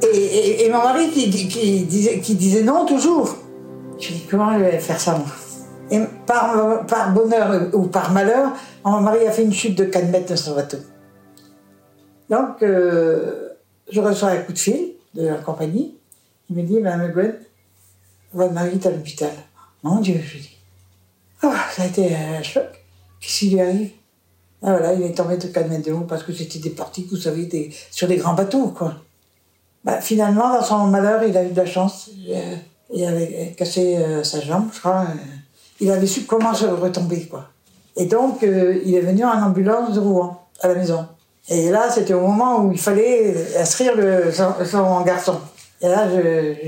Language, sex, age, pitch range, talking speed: French, female, 60-79, 160-215 Hz, 205 wpm